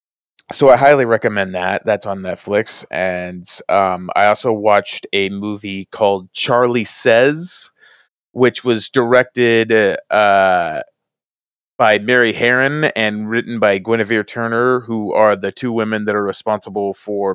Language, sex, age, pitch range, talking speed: English, male, 30-49, 100-125 Hz, 135 wpm